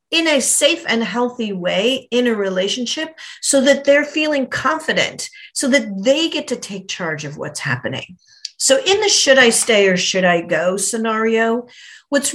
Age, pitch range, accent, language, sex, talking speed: 50-69, 200-275 Hz, American, English, female, 175 wpm